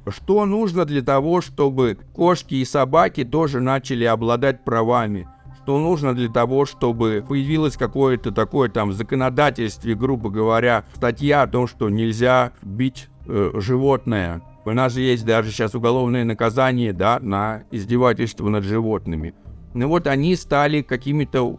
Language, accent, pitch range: Russian, native, 115-135 Hz